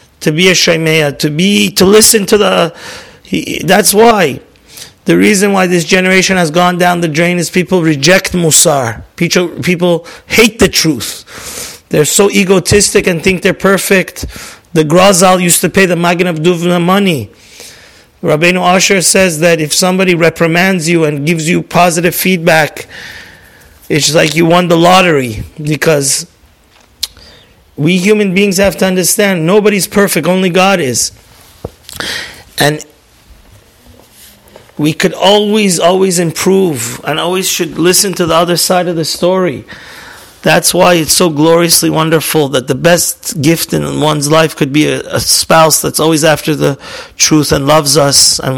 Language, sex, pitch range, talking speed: English, male, 155-185 Hz, 150 wpm